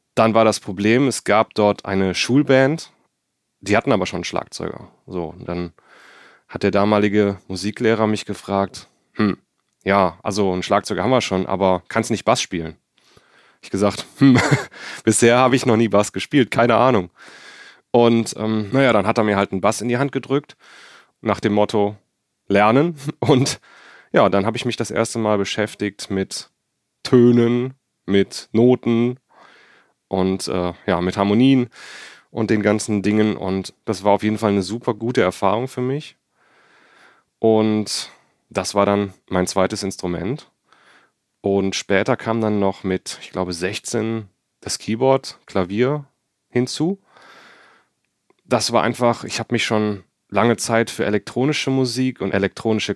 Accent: German